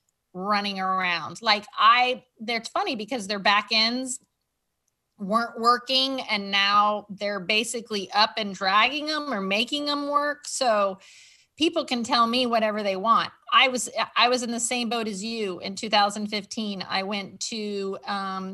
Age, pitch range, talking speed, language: 30-49, 195-235 Hz, 155 wpm, English